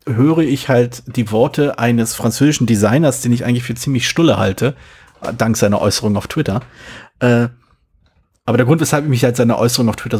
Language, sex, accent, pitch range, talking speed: German, male, German, 105-130 Hz, 180 wpm